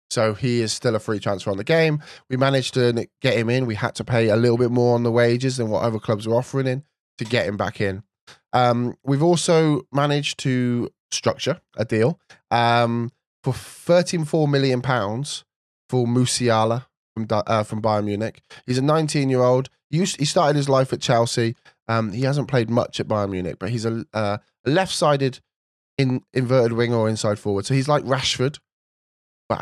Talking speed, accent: 190 wpm, British